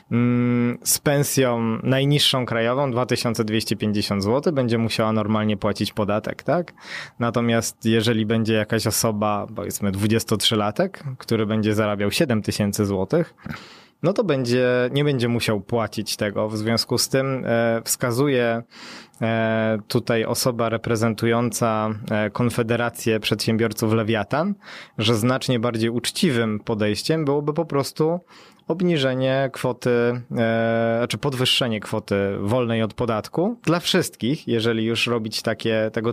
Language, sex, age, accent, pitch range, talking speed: Polish, male, 20-39, native, 110-135 Hz, 110 wpm